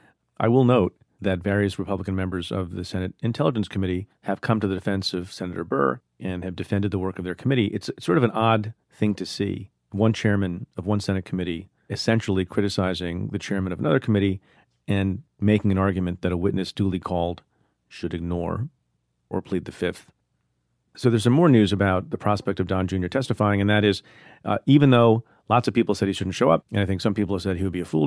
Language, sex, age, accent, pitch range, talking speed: English, male, 40-59, American, 95-110 Hz, 220 wpm